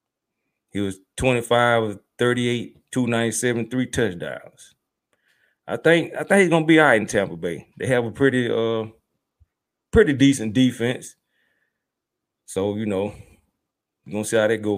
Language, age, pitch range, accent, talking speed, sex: English, 30-49, 110-140 Hz, American, 145 wpm, male